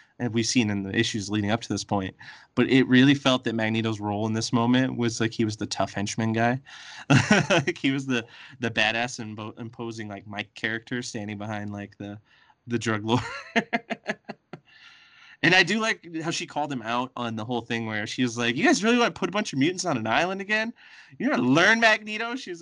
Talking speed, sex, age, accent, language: 225 wpm, male, 20-39, American, English